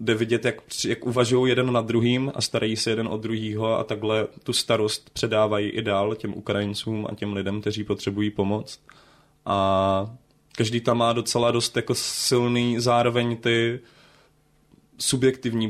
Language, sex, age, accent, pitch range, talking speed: Czech, male, 20-39, native, 105-120 Hz, 155 wpm